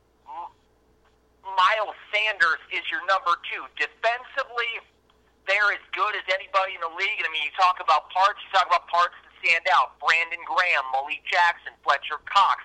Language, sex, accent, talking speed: English, male, American, 165 wpm